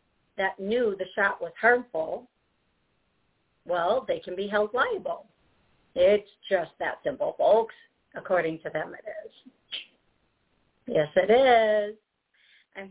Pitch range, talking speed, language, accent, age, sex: 195-240 Hz, 120 wpm, English, American, 50-69, female